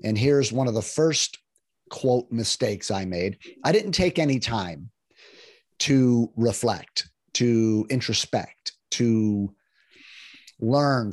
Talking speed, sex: 115 wpm, male